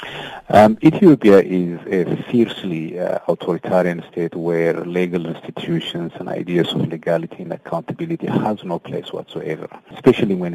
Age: 40-59